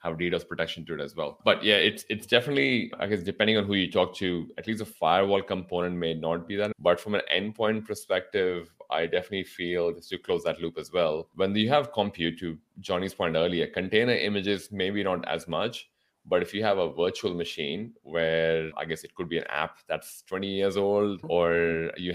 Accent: Indian